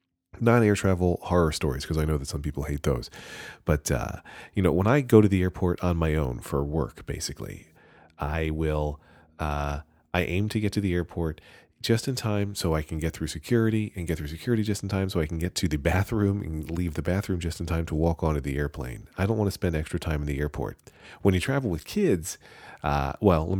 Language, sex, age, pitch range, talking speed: English, male, 30-49, 75-95 Hz, 230 wpm